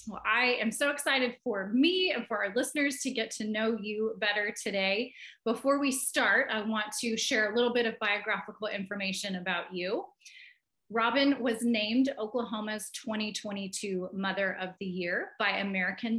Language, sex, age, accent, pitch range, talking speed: English, female, 20-39, American, 205-270 Hz, 165 wpm